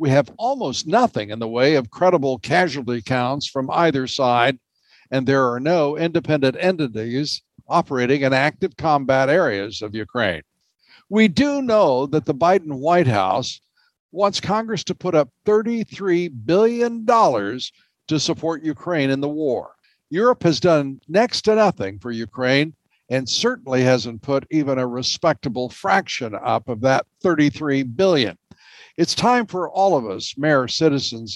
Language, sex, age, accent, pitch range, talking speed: English, male, 60-79, American, 130-175 Hz, 145 wpm